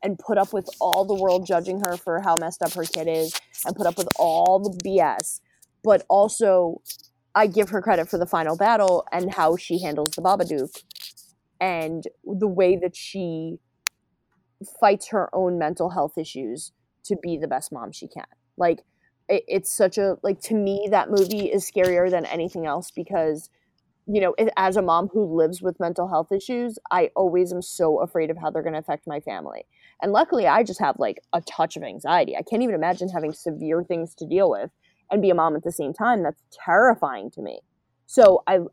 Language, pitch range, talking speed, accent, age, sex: English, 165-200 Hz, 200 wpm, American, 20-39, female